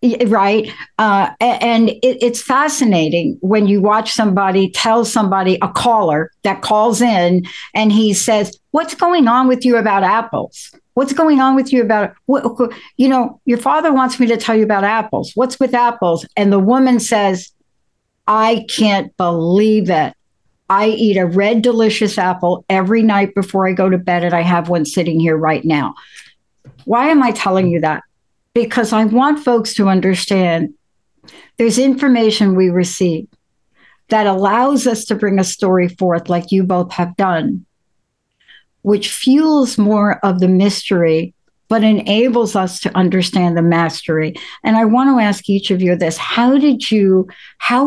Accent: American